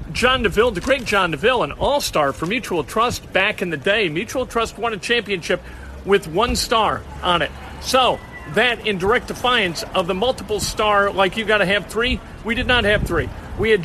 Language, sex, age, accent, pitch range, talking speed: English, male, 50-69, American, 180-230 Hz, 205 wpm